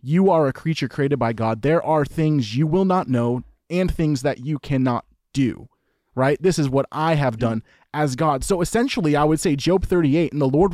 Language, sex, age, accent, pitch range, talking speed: English, male, 30-49, American, 125-175 Hz, 220 wpm